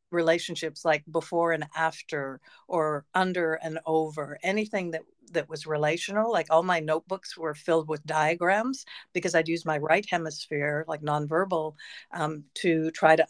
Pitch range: 155-180 Hz